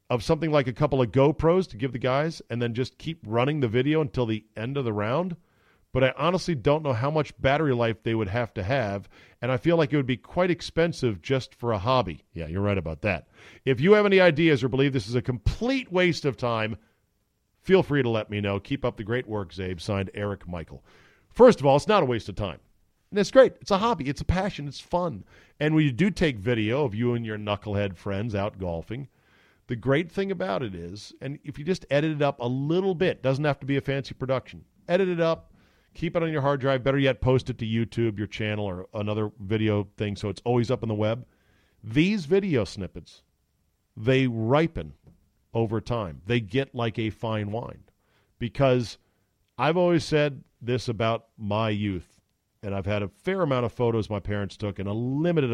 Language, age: English, 40-59